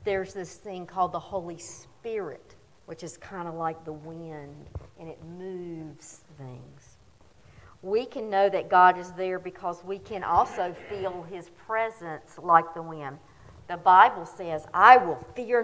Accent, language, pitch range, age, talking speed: American, English, 165-210 Hz, 50-69, 155 wpm